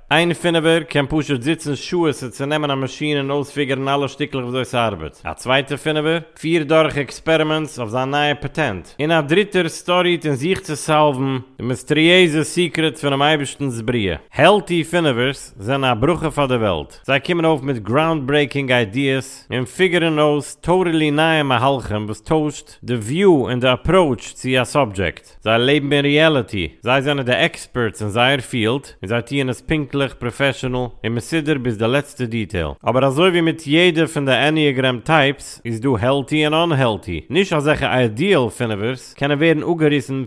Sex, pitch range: male, 125-155 Hz